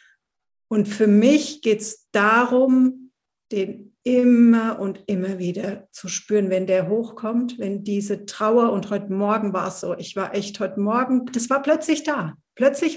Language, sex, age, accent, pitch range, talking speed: German, female, 50-69, German, 215-270 Hz, 160 wpm